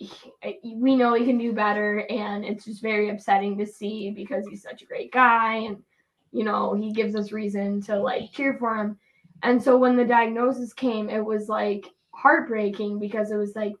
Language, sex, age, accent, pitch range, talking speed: English, female, 10-29, American, 205-240 Hz, 195 wpm